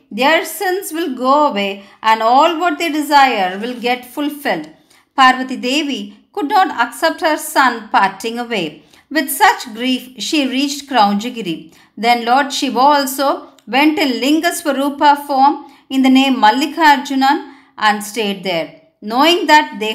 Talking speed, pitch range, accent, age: 140 wpm, 220-295 Hz, native, 50-69